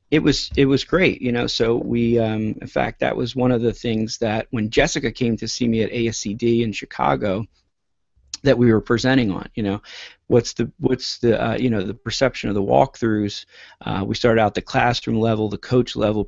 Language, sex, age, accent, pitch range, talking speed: English, male, 40-59, American, 105-125 Hz, 215 wpm